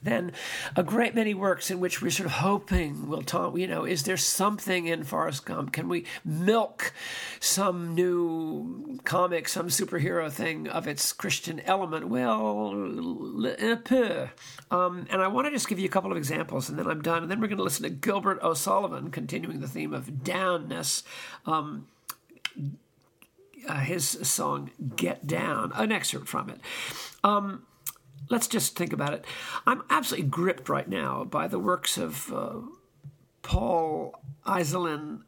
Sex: male